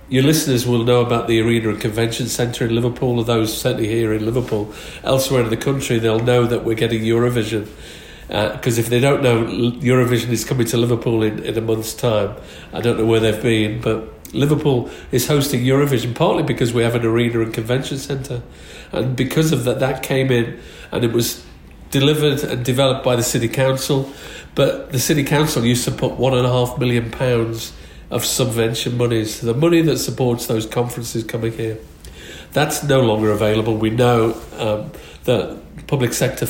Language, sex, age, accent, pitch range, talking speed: English, male, 50-69, British, 115-135 Hz, 185 wpm